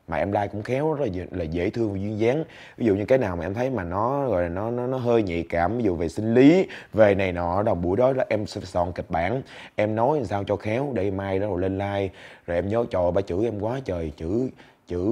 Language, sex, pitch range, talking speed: Vietnamese, male, 95-120 Hz, 280 wpm